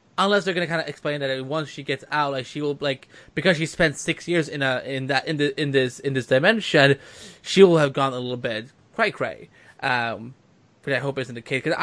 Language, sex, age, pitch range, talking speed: English, male, 20-39, 135-180 Hz, 250 wpm